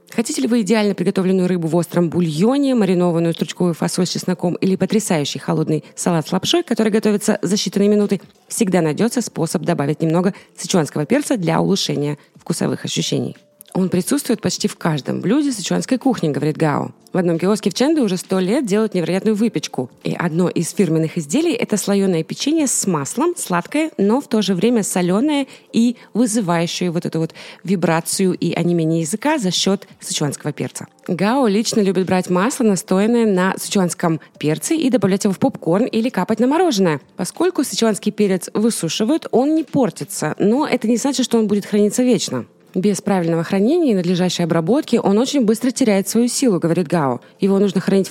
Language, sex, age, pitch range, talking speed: Russian, female, 20-39, 170-225 Hz, 175 wpm